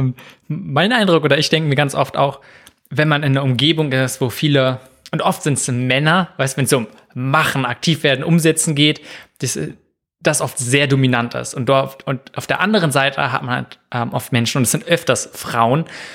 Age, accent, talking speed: 20-39, German, 210 wpm